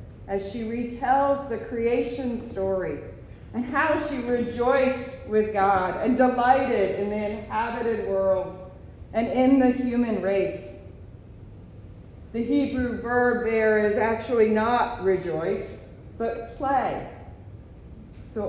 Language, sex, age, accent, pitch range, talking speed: English, female, 40-59, American, 185-240 Hz, 110 wpm